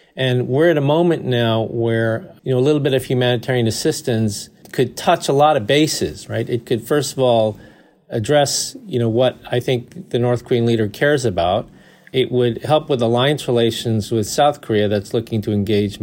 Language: English